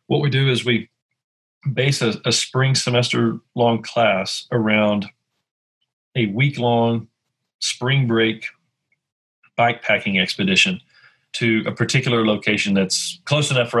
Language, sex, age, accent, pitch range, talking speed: English, male, 40-59, American, 105-125 Hz, 115 wpm